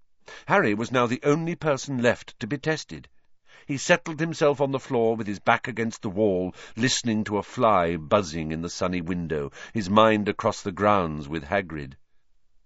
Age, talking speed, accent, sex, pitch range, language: 50-69, 180 wpm, British, male, 90-125 Hz, English